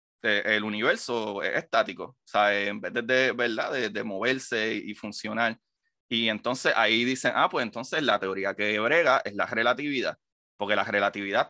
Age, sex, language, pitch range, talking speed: 30-49, male, Spanish, 105-145 Hz, 175 wpm